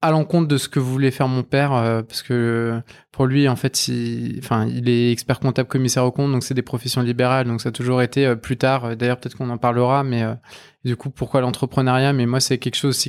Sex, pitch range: male, 120-135 Hz